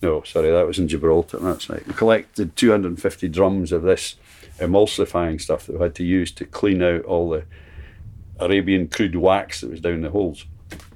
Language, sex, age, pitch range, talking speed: English, male, 60-79, 80-90 Hz, 190 wpm